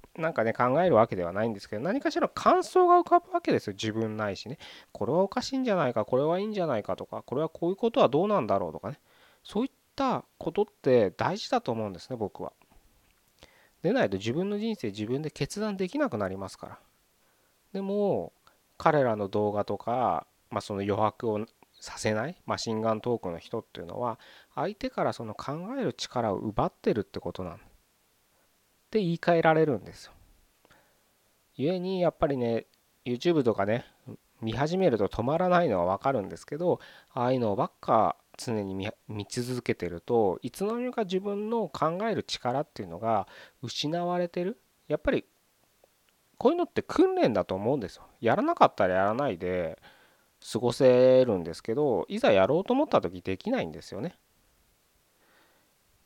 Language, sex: Japanese, male